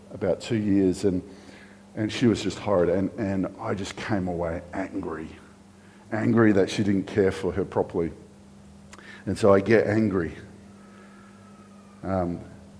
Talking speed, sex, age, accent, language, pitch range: 140 wpm, male, 50-69, Australian, English, 100-150 Hz